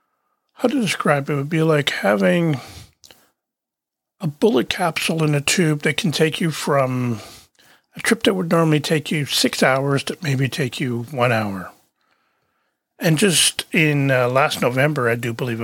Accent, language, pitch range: American, English, 125-160 Hz